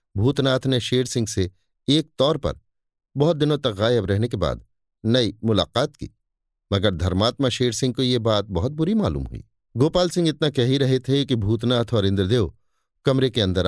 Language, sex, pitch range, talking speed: Hindi, male, 95-130 Hz, 190 wpm